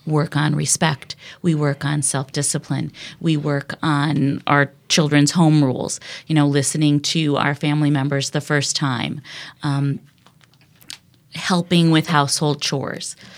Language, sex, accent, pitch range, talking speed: English, female, American, 140-170 Hz, 130 wpm